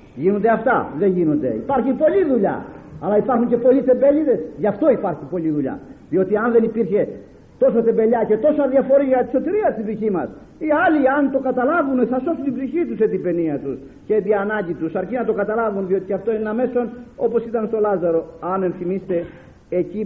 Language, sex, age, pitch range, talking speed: Greek, male, 50-69, 200-275 Hz, 200 wpm